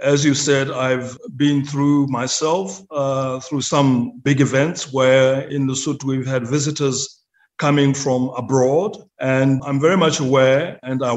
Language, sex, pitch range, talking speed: English, male, 130-150 Hz, 155 wpm